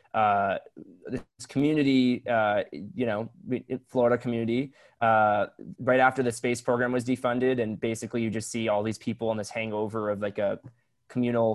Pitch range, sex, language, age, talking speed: 110-125 Hz, male, English, 20-39, 155 wpm